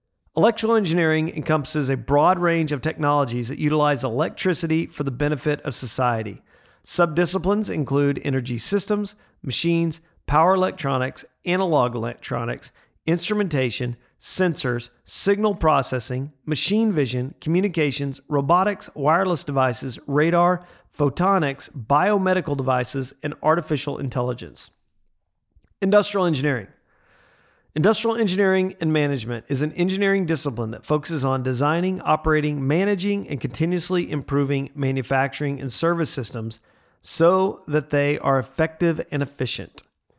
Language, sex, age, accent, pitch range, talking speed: English, male, 40-59, American, 135-175 Hz, 105 wpm